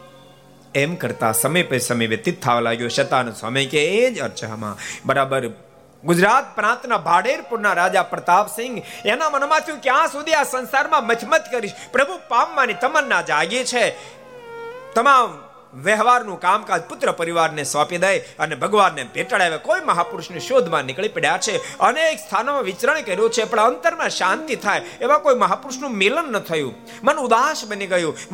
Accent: native